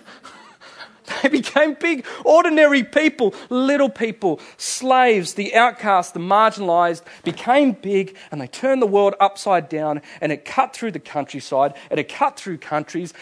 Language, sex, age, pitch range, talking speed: English, male, 40-59, 145-220 Hz, 145 wpm